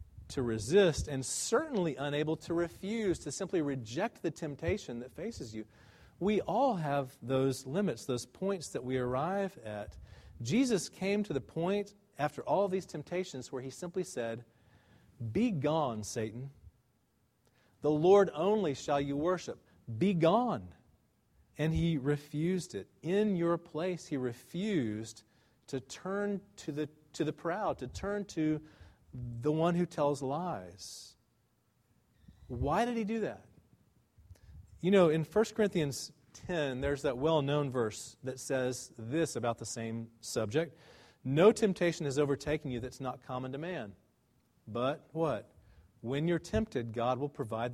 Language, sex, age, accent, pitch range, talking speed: English, male, 40-59, American, 120-170 Hz, 145 wpm